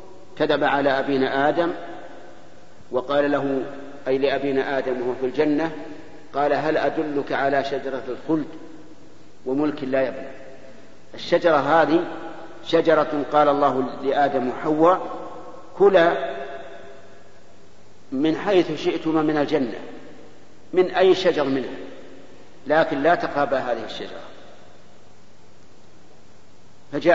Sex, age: male, 50-69